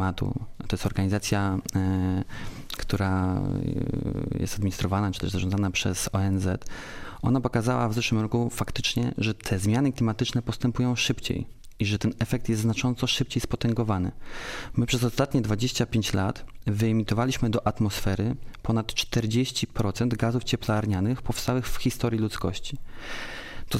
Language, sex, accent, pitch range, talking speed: Polish, male, native, 100-125 Hz, 120 wpm